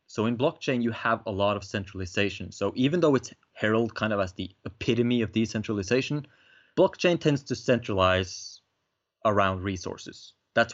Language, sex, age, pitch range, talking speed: English, male, 30-49, 95-115 Hz, 155 wpm